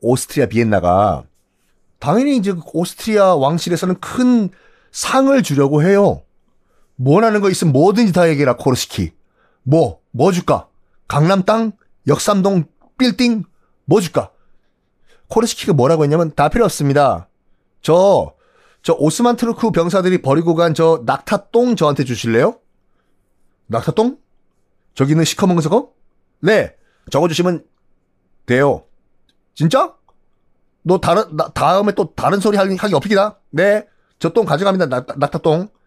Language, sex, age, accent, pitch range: Korean, male, 30-49, native, 135-200 Hz